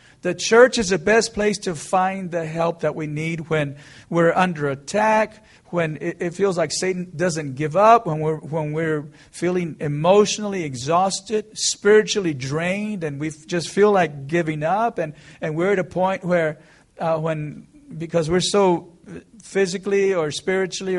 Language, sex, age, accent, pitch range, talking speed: English, male, 40-59, American, 155-200 Hz, 160 wpm